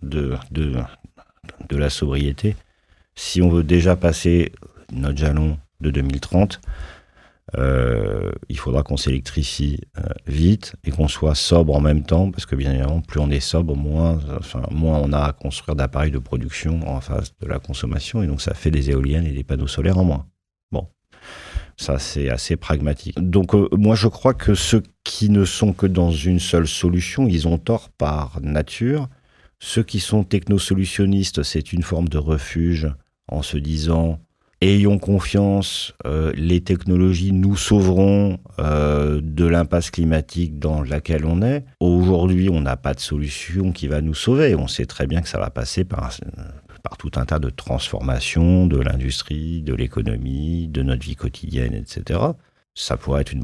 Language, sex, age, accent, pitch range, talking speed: French, male, 50-69, French, 75-95 Hz, 170 wpm